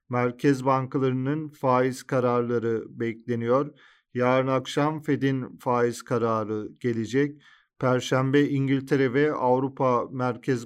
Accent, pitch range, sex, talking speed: native, 125-140 Hz, male, 90 wpm